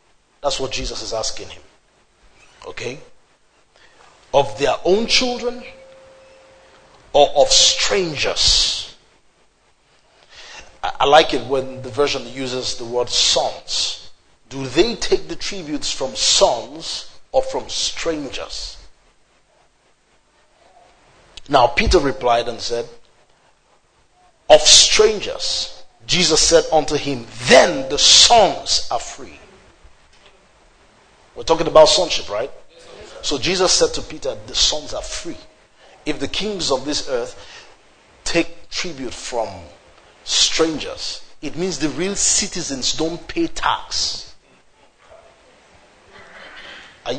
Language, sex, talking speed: English, male, 105 wpm